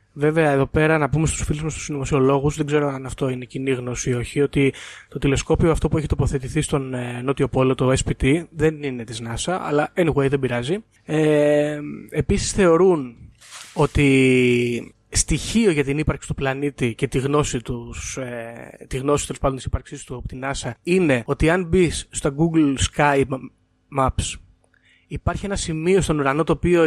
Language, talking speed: Greek, 165 wpm